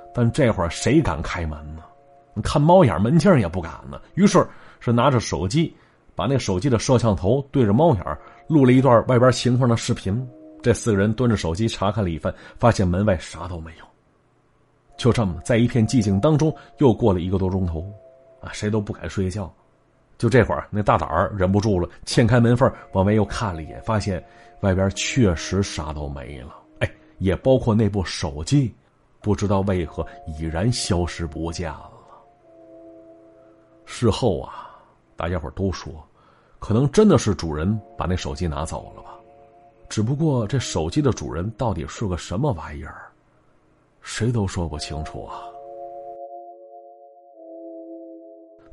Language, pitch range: Chinese, 95-140 Hz